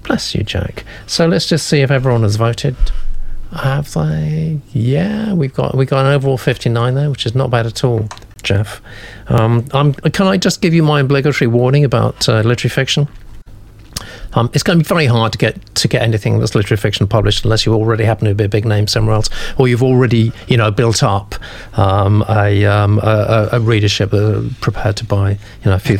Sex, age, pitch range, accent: male, 40-59, 105-145 Hz, British